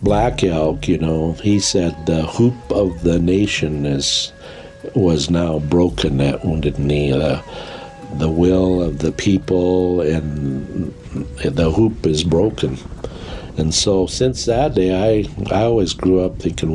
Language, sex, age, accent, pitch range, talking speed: English, male, 60-79, American, 75-90 Hz, 145 wpm